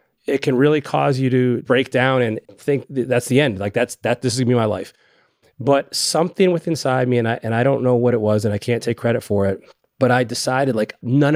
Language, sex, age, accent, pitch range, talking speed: English, male, 30-49, American, 115-135 Hz, 265 wpm